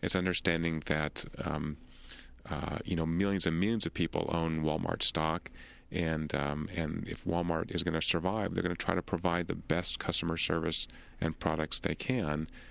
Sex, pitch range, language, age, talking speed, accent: male, 80-90 Hz, English, 40-59, 180 wpm, American